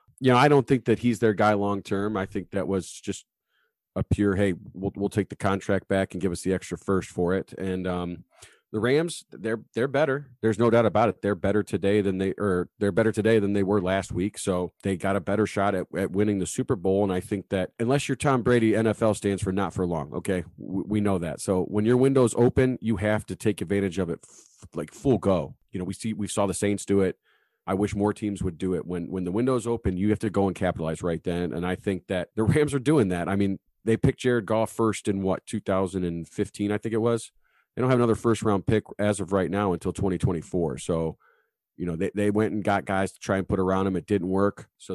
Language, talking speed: English, 255 wpm